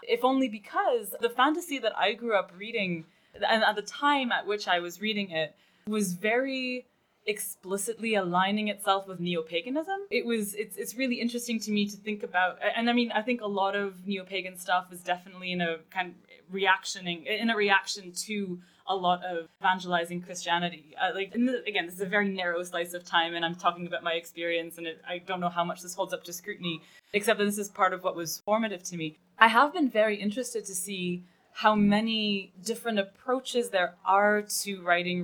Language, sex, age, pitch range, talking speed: Swedish, female, 20-39, 175-215 Hz, 205 wpm